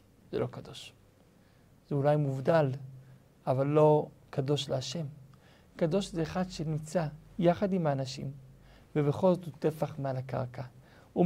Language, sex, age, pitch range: Hebrew, male, 50-69, 135-175 Hz